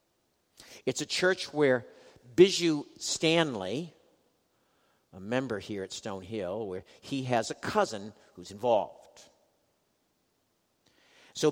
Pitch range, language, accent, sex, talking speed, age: 105-150 Hz, English, American, male, 105 wpm, 50-69